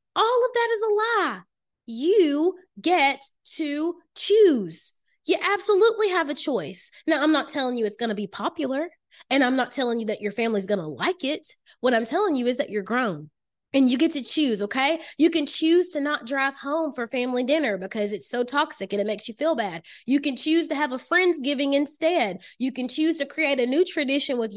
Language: English